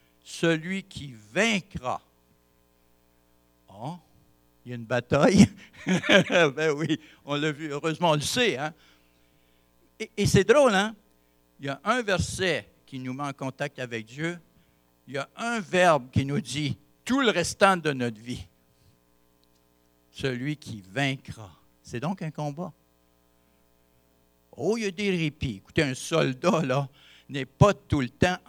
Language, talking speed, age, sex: French, 150 wpm, 60-79, male